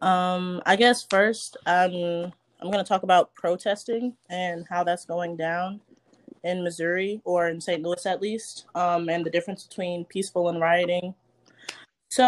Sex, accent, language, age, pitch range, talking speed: female, American, English, 20-39, 160-190 Hz, 160 wpm